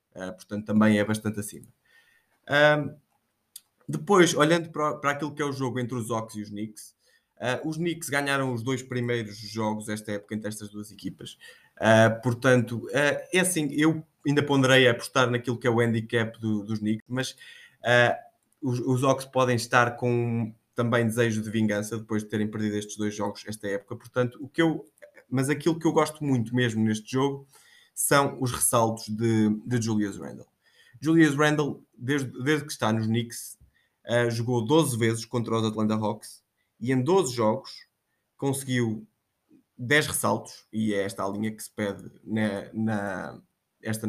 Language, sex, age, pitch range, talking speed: Portuguese, male, 20-39, 110-140 Hz, 160 wpm